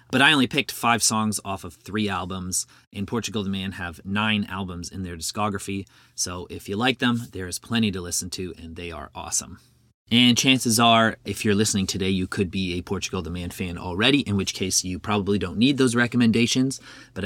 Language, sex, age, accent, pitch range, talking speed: English, male, 30-49, American, 95-120 Hz, 210 wpm